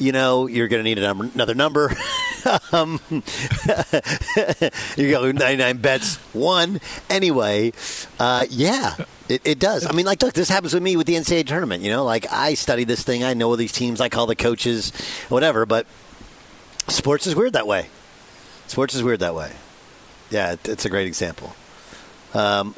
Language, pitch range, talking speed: English, 115-165 Hz, 180 wpm